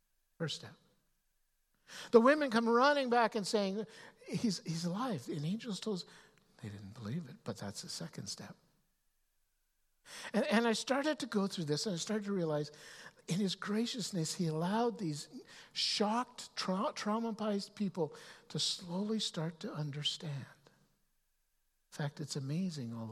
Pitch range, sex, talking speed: 150-205 Hz, male, 150 wpm